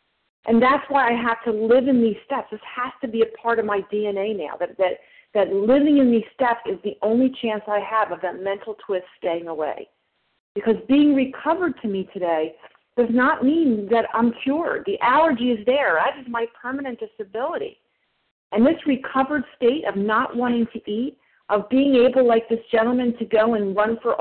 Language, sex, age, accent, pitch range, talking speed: English, female, 40-59, American, 200-250 Hz, 200 wpm